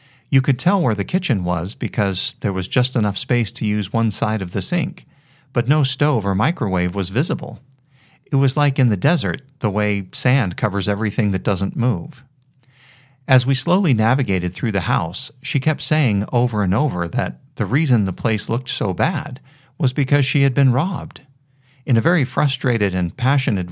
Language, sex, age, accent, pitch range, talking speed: English, male, 40-59, American, 105-140 Hz, 185 wpm